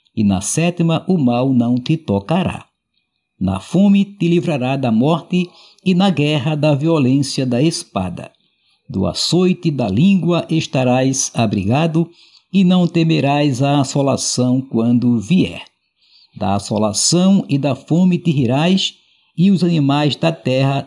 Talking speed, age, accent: 130 wpm, 60-79, Brazilian